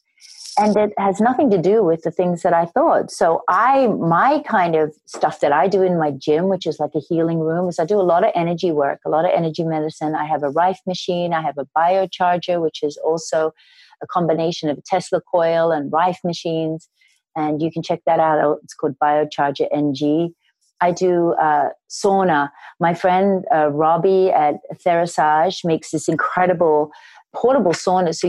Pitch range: 150-185 Hz